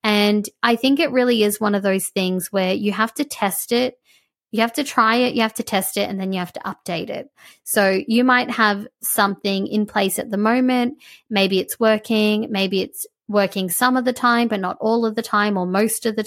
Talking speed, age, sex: 230 wpm, 20-39, female